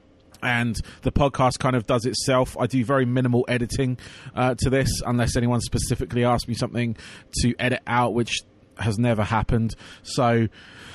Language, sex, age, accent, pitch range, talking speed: English, male, 20-39, British, 110-125 Hz, 160 wpm